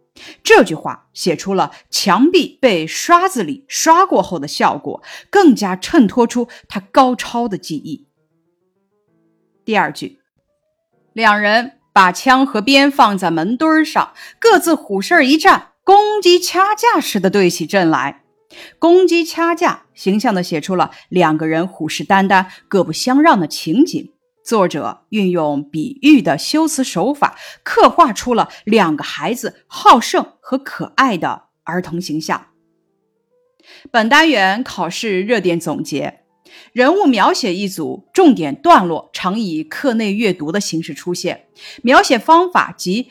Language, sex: Chinese, female